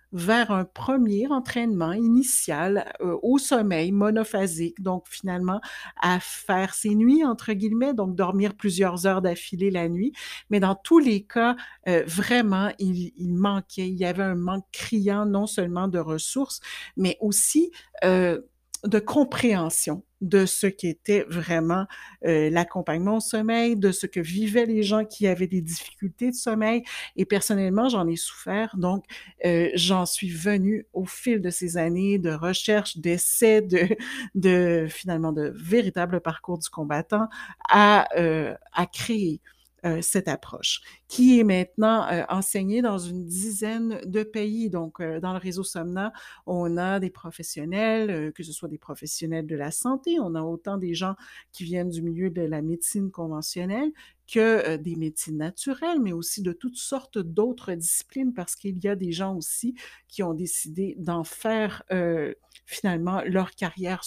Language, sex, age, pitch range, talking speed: French, female, 60-79, 175-215 Hz, 155 wpm